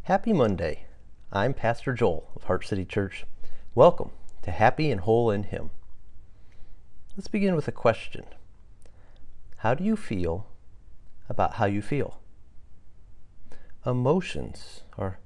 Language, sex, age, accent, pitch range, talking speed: English, male, 40-59, American, 95-115 Hz, 120 wpm